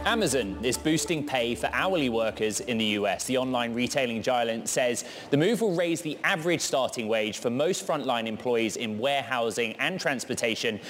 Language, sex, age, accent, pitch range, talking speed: English, male, 20-39, British, 120-155 Hz, 170 wpm